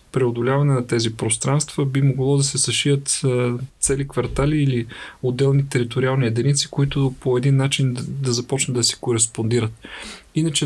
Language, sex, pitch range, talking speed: Bulgarian, male, 120-140 Hz, 140 wpm